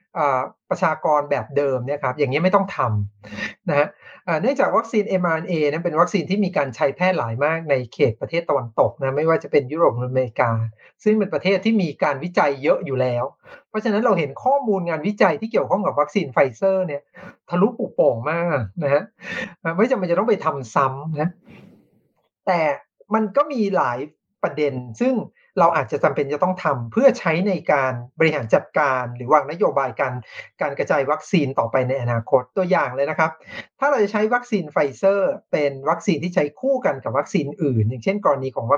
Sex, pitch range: male, 135-195 Hz